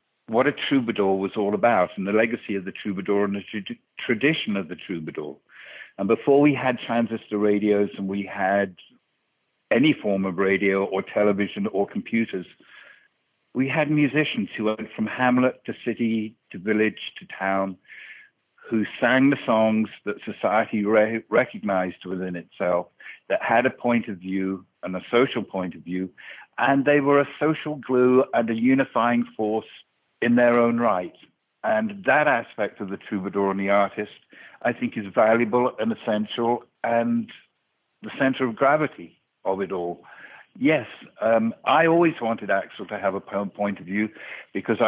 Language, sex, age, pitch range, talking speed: English, male, 60-79, 100-120 Hz, 160 wpm